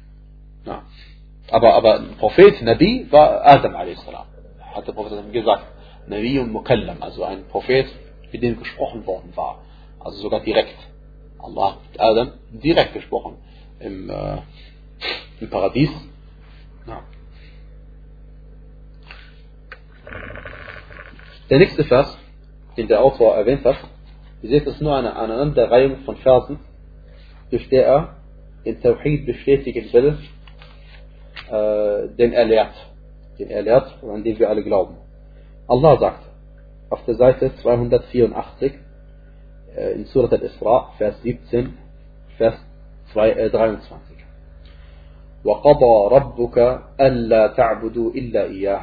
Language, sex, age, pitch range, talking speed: German, male, 40-59, 105-140 Hz, 95 wpm